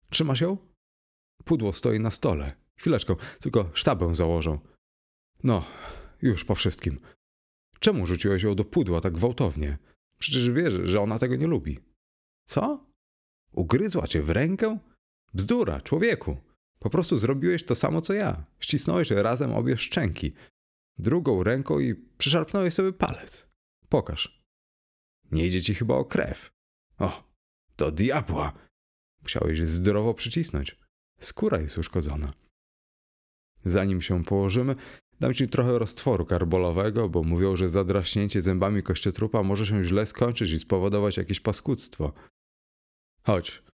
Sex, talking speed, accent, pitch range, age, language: male, 125 wpm, native, 80-115 Hz, 30-49, Polish